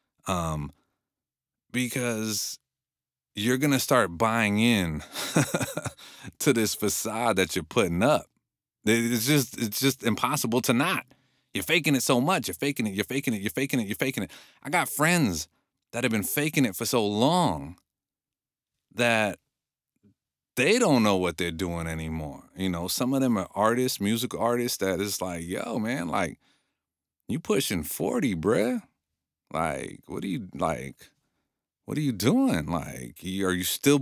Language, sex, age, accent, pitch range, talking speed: English, male, 30-49, American, 100-145 Hz, 160 wpm